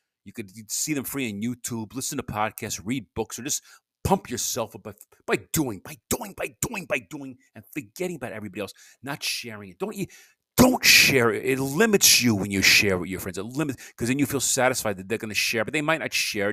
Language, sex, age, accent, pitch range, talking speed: English, male, 40-59, American, 105-130 Hz, 235 wpm